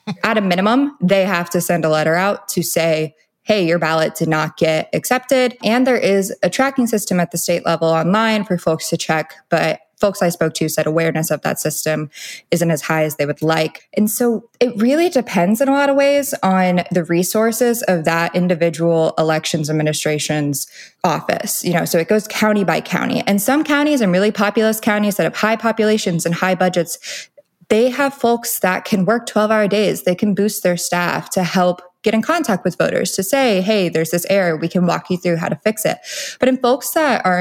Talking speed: 210 wpm